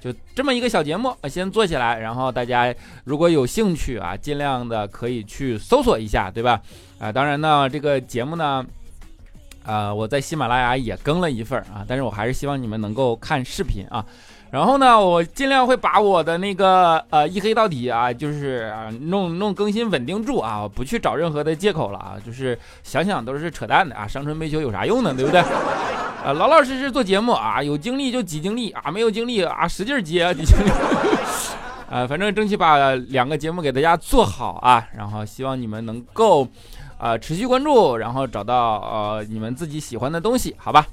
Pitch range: 115-185 Hz